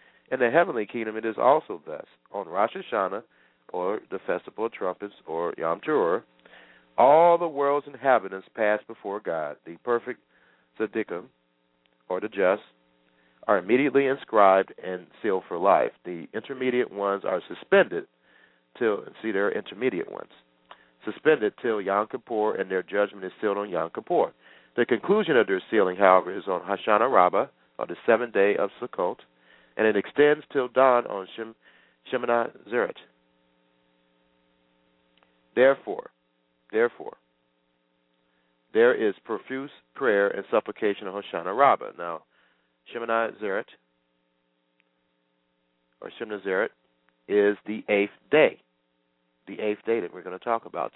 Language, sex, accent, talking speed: English, male, American, 135 wpm